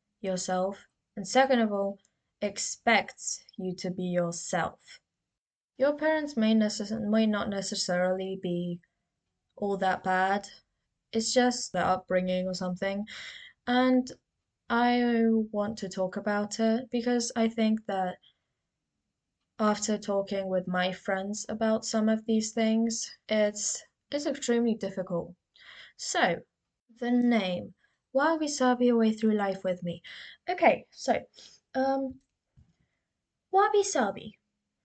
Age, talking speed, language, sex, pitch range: 20-39, 115 wpm, English, female, 190-230 Hz